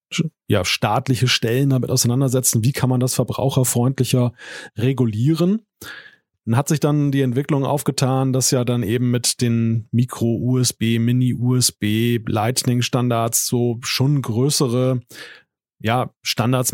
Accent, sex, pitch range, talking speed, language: German, male, 120-135 Hz, 110 wpm, German